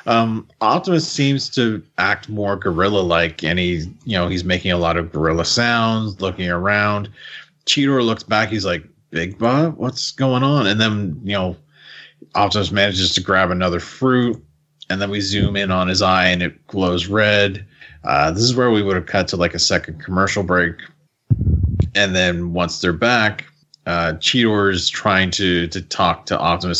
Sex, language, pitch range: male, English, 85-105 Hz